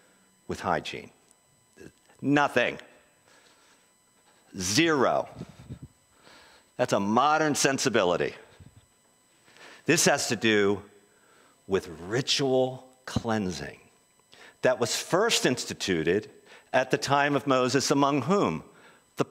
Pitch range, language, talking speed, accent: 130-175 Hz, English, 85 wpm, American